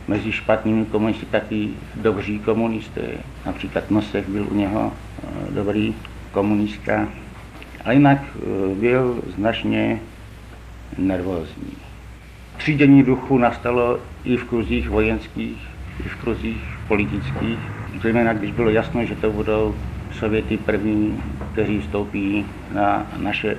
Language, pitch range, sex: Czech, 95-115 Hz, male